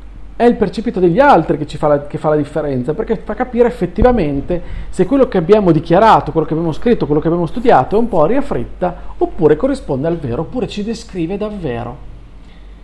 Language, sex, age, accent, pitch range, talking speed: Italian, male, 40-59, native, 145-200 Hz, 200 wpm